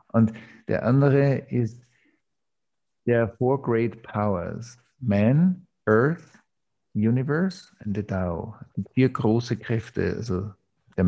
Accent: German